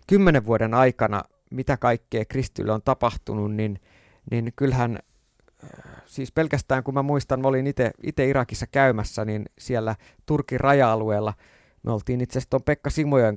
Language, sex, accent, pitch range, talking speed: Finnish, male, native, 110-140 Hz, 145 wpm